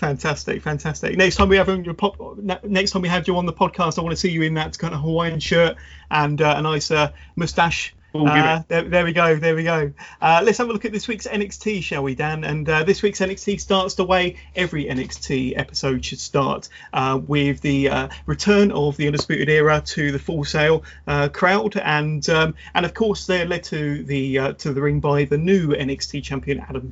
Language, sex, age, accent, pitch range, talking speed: English, male, 30-49, British, 140-180 Hz, 220 wpm